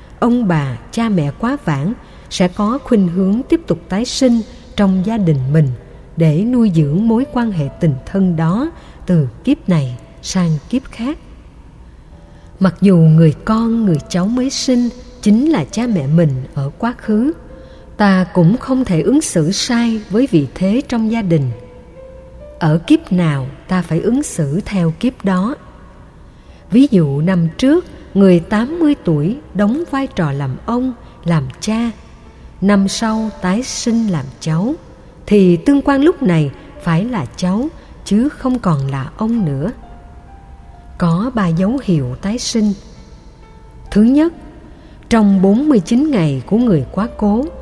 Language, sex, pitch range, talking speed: Vietnamese, female, 165-235 Hz, 155 wpm